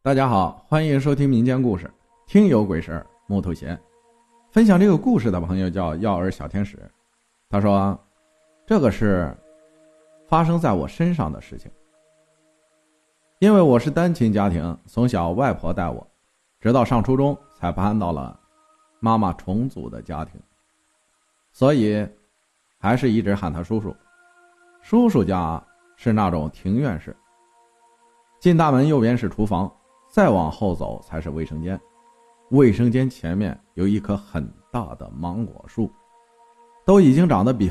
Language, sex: Chinese, male